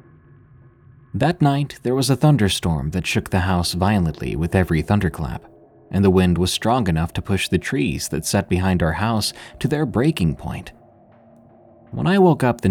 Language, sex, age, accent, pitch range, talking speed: English, male, 30-49, American, 85-115 Hz, 180 wpm